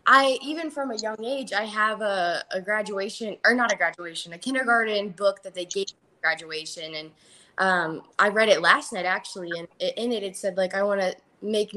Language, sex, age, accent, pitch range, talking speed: English, female, 10-29, American, 180-230 Hz, 210 wpm